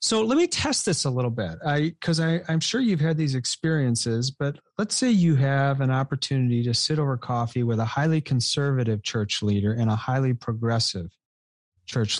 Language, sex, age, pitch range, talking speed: English, male, 40-59, 115-160 Hz, 190 wpm